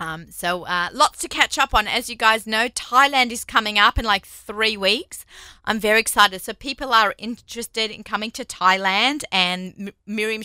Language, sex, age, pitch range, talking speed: English, female, 30-49, 180-235 Hz, 195 wpm